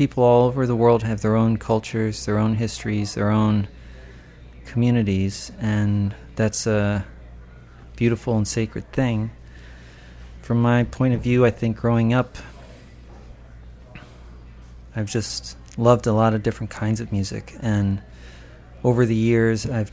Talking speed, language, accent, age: 140 wpm, English, American, 30-49